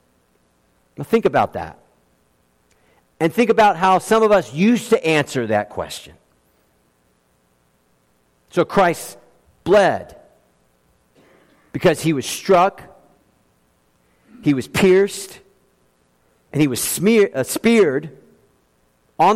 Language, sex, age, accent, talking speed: English, male, 50-69, American, 100 wpm